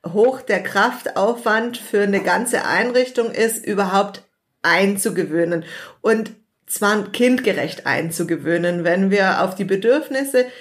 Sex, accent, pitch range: female, German, 185-235 Hz